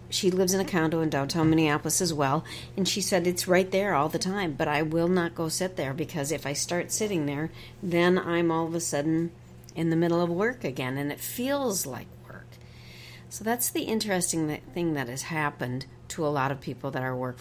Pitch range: 135-175 Hz